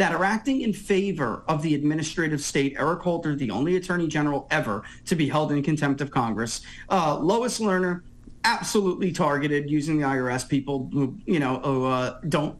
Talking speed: 180 wpm